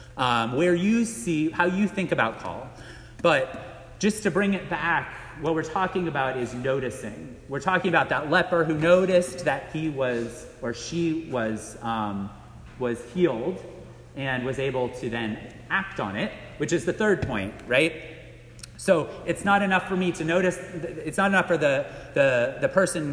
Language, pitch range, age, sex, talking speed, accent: English, 115-170 Hz, 30-49, male, 175 wpm, American